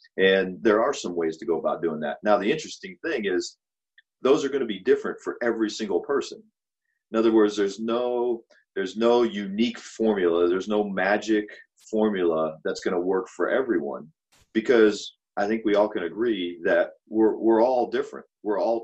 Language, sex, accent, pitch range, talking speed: English, male, American, 95-130 Hz, 185 wpm